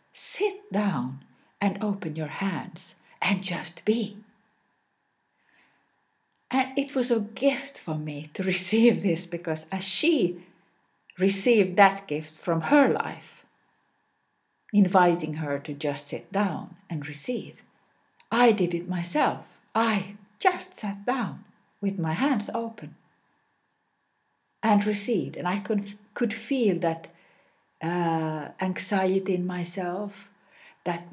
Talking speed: 120 wpm